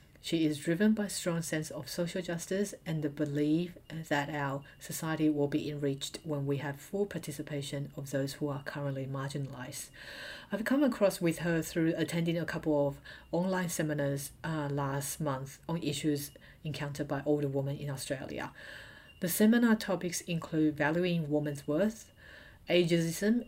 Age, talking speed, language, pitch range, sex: 40-59, 155 wpm, English, 145-165 Hz, female